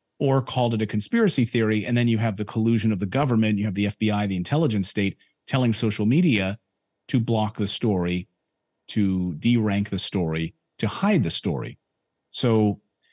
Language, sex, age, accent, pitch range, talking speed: English, male, 40-59, American, 100-120 Hz, 175 wpm